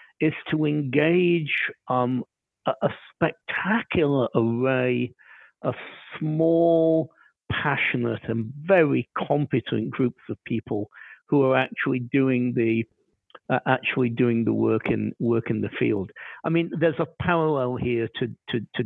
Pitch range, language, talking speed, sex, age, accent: 115-135 Hz, English, 130 wpm, male, 50-69, British